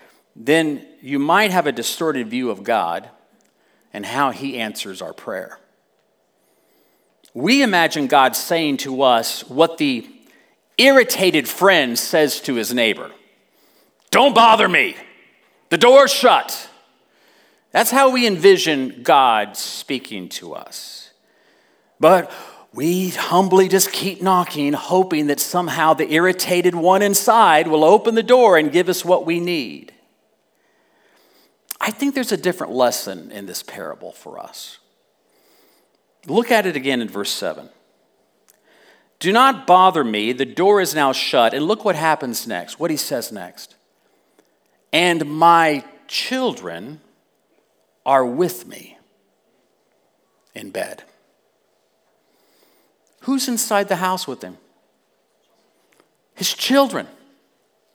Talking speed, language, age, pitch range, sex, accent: 120 wpm, English, 40-59, 150-230 Hz, male, American